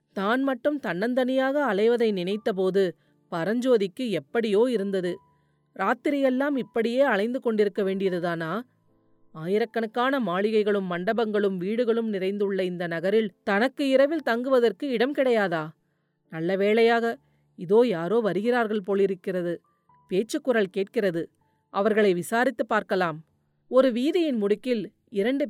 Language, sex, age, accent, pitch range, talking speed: Tamil, female, 30-49, native, 185-255 Hz, 95 wpm